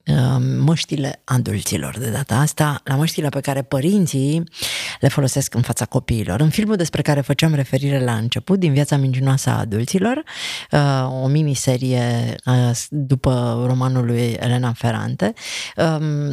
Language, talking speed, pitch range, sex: Romanian, 130 wpm, 140-185 Hz, female